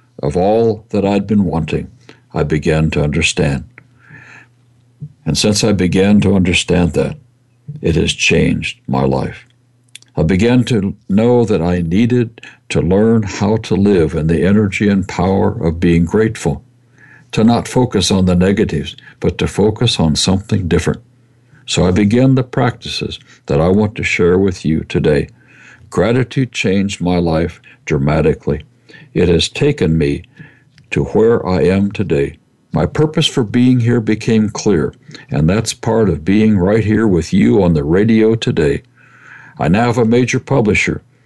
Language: English